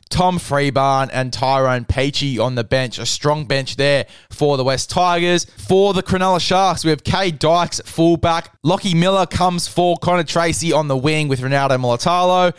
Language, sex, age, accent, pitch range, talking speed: English, male, 20-39, Australian, 140-175 Hz, 175 wpm